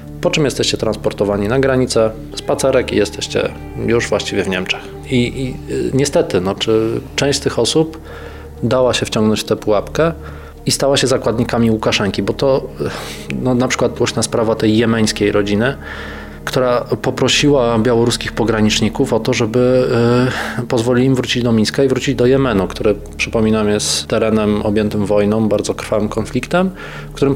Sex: male